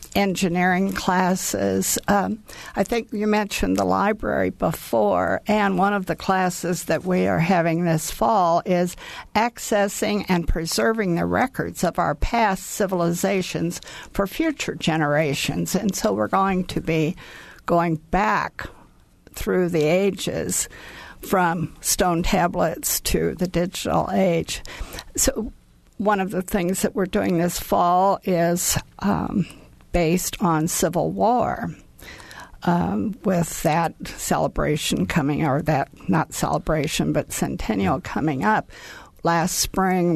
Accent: American